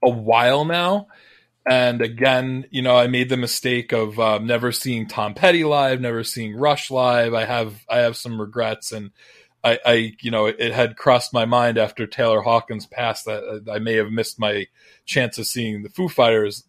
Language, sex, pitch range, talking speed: English, male, 110-125 Hz, 195 wpm